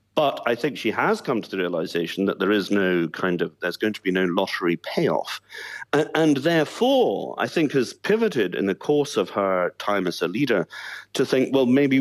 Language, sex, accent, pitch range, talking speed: English, male, British, 100-135 Hz, 210 wpm